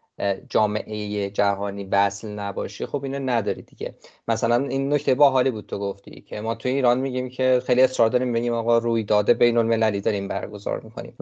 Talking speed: 170 wpm